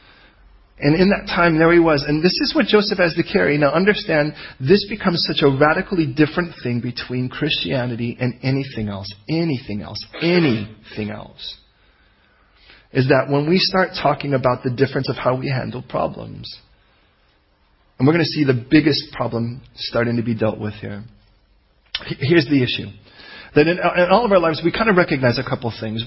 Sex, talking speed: male, 180 wpm